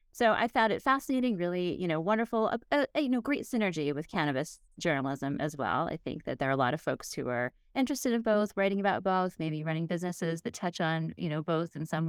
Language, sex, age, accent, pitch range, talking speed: English, female, 30-49, American, 155-205 Hz, 240 wpm